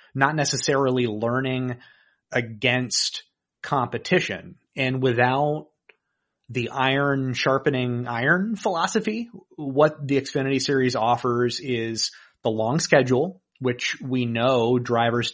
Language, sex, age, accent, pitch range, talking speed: English, male, 30-49, American, 115-140 Hz, 100 wpm